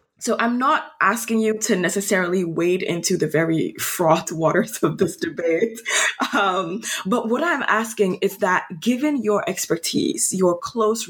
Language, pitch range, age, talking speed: English, 165-215 Hz, 20-39, 150 wpm